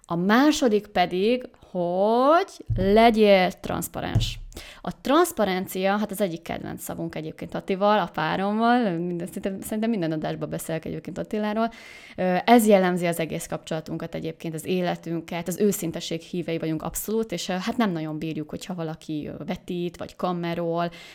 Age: 20-39